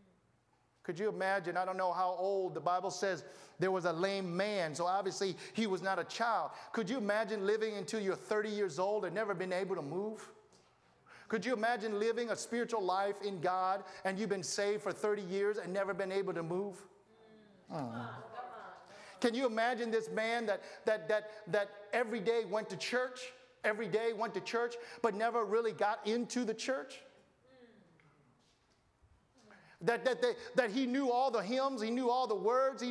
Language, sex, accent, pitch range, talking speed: English, male, American, 195-255 Hz, 185 wpm